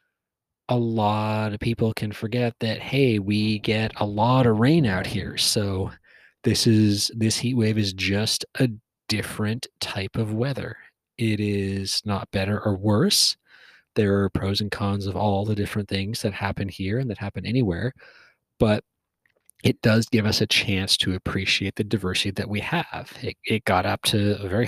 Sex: male